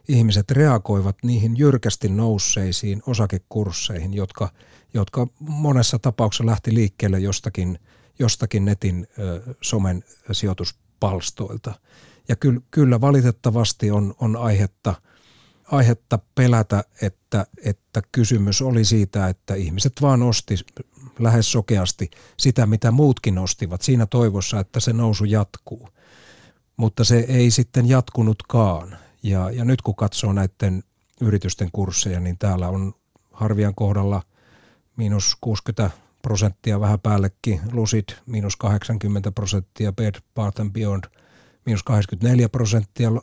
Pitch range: 100-120 Hz